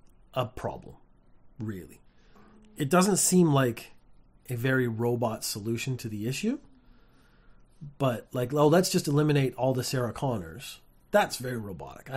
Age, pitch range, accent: 40-59, 110-150 Hz, American